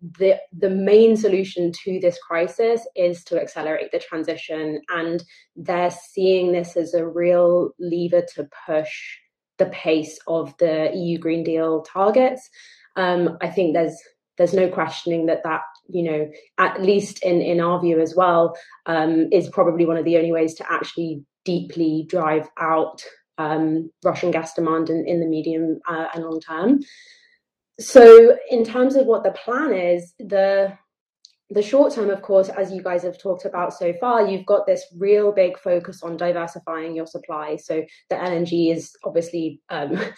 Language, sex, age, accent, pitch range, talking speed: English, female, 20-39, British, 160-185 Hz, 165 wpm